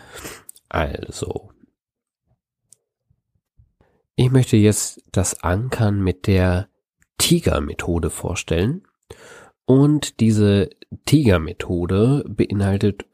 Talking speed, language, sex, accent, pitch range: 65 wpm, German, male, German, 90-115 Hz